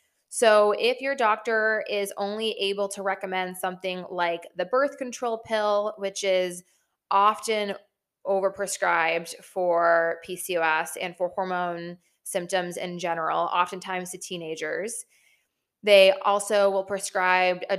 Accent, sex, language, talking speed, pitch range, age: American, female, English, 120 wpm, 180-210 Hz, 20-39